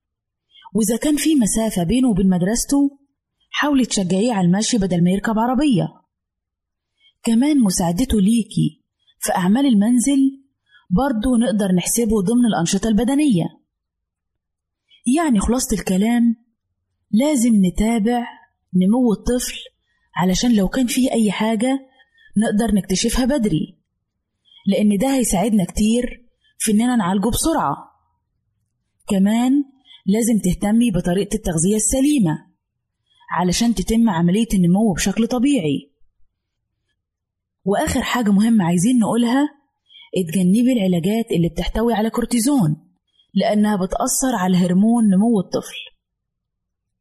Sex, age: female, 20-39